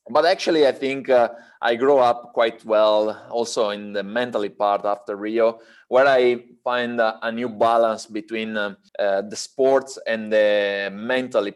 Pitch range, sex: 105-130 Hz, male